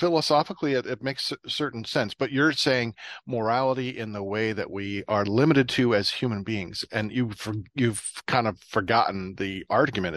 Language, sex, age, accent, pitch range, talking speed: English, male, 40-59, American, 105-130 Hz, 170 wpm